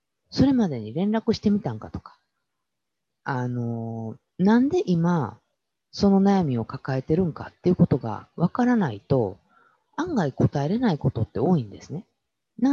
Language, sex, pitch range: Japanese, female, 125-205 Hz